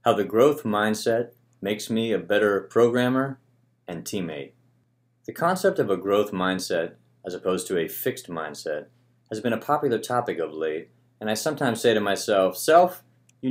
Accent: American